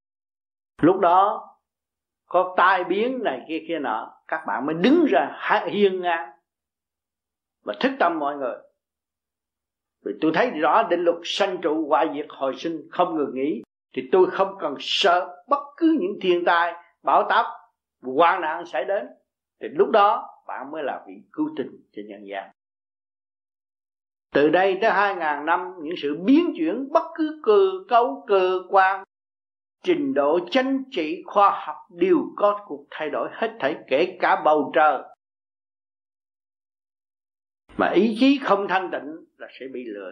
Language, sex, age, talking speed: Vietnamese, male, 50-69, 160 wpm